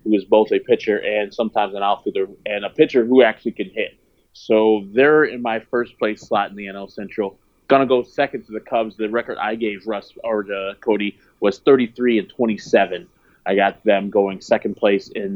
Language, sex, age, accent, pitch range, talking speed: English, male, 30-49, American, 100-120 Hz, 205 wpm